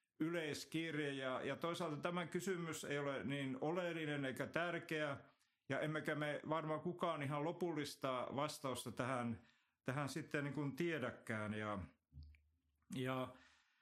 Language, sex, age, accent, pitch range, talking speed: Finnish, male, 50-69, native, 135-170 Hz, 115 wpm